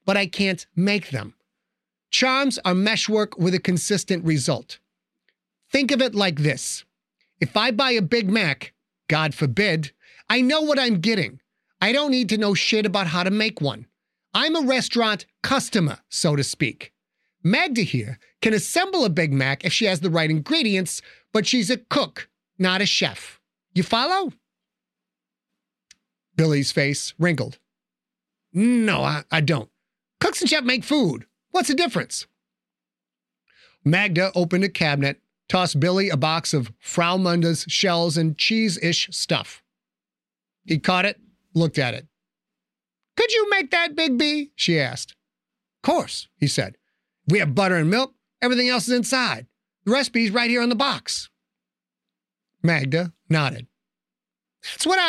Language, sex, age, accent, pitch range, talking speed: English, male, 30-49, American, 155-245 Hz, 150 wpm